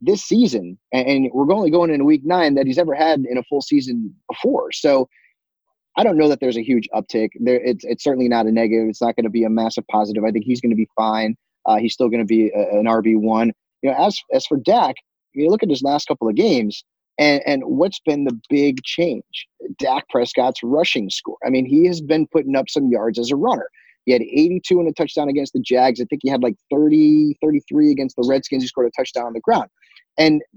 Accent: American